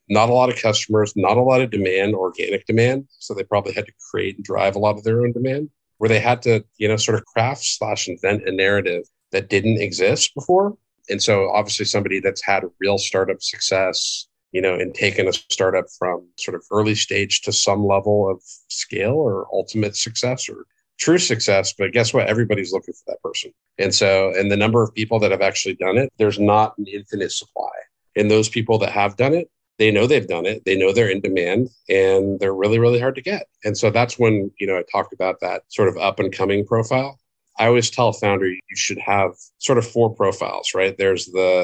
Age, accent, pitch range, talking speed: 50-69, American, 100-120 Hz, 225 wpm